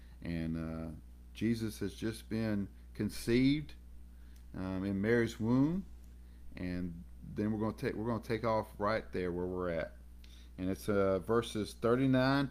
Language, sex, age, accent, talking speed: English, male, 50-69, American, 155 wpm